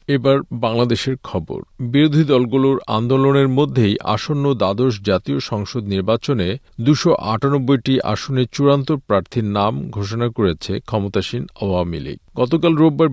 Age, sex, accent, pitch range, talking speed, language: 50-69, male, native, 105-135 Hz, 115 wpm, Bengali